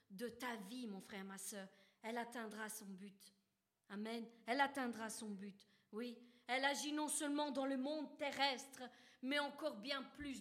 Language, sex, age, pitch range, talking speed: French, female, 40-59, 230-285 Hz, 165 wpm